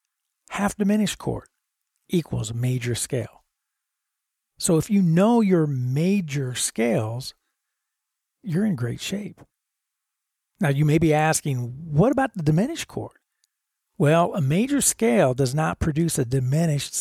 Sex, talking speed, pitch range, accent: male, 125 wpm, 130-175 Hz, American